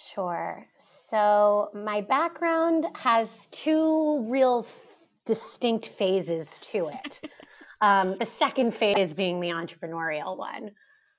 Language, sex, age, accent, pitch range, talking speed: English, female, 30-49, American, 175-215 Hz, 100 wpm